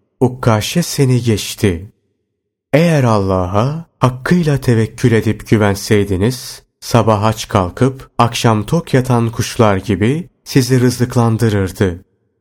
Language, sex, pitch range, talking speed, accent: Turkish, male, 100-130 Hz, 90 wpm, native